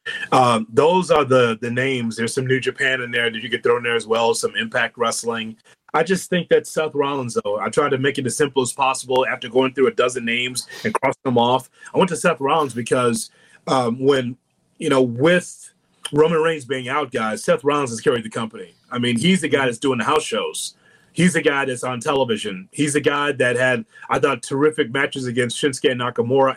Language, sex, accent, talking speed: English, male, American, 220 wpm